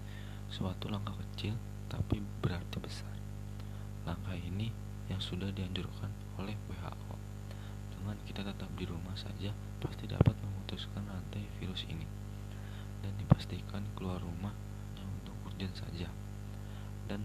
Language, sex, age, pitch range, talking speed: Indonesian, male, 20-39, 95-100 Hz, 120 wpm